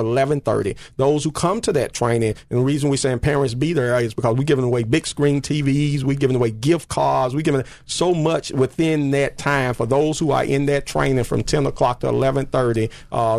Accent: American